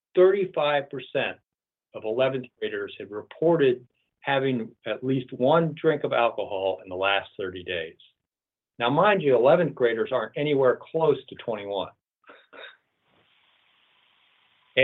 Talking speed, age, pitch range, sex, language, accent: 110 wpm, 50-69, 125-175 Hz, male, English, American